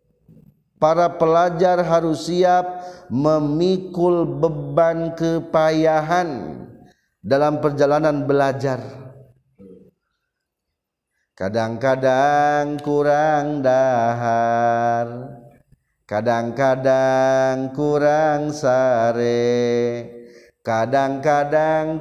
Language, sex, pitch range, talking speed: Indonesian, male, 120-155 Hz, 45 wpm